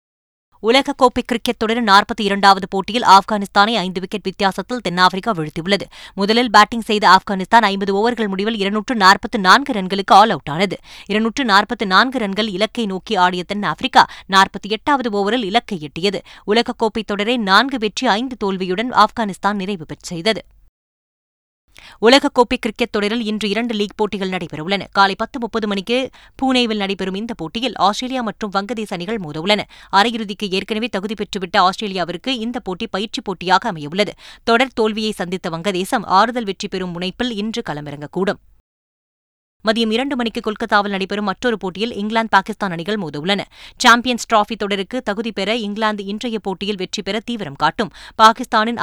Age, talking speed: 20-39, 130 wpm